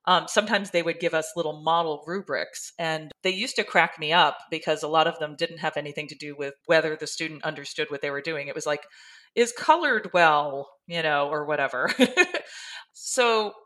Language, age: English, 40-59